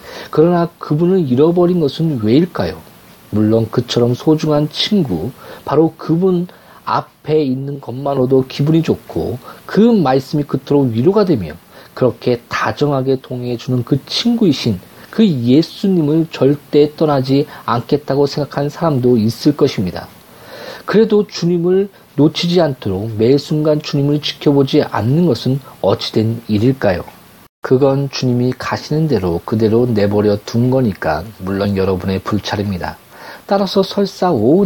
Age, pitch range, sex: 40-59, 115-160 Hz, male